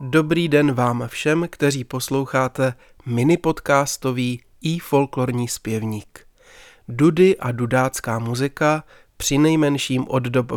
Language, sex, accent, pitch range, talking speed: Czech, male, native, 125-150 Hz, 90 wpm